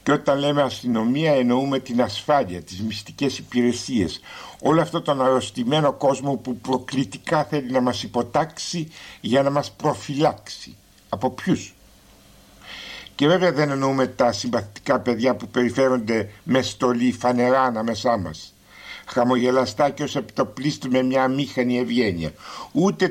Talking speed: 130 wpm